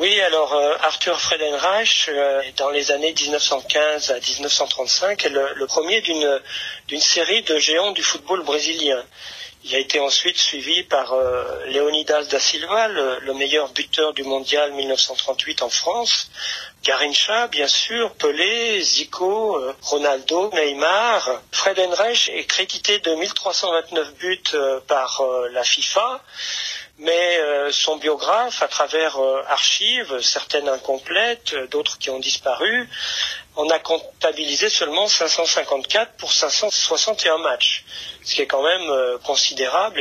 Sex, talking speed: male, 130 wpm